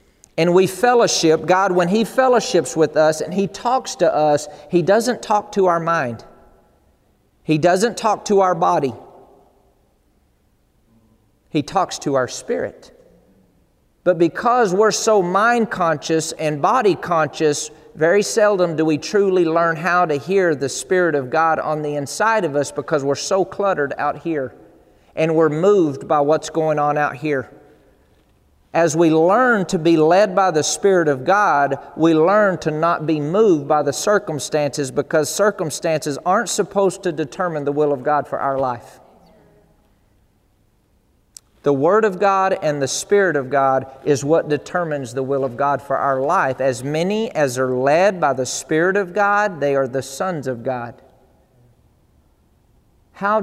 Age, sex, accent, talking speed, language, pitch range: 40-59, male, American, 160 wpm, English, 140-185 Hz